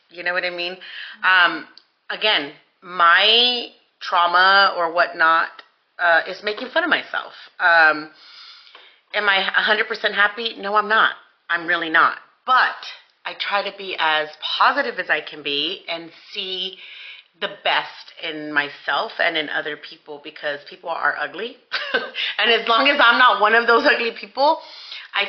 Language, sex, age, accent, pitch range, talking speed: English, female, 30-49, American, 170-225 Hz, 155 wpm